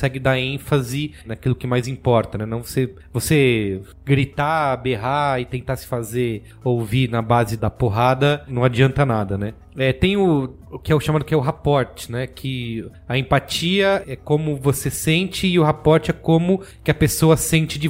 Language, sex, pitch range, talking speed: Portuguese, male, 120-155 Hz, 185 wpm